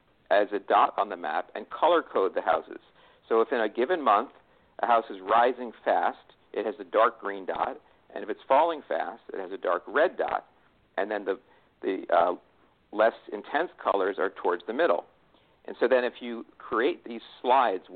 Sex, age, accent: male, 50-69, American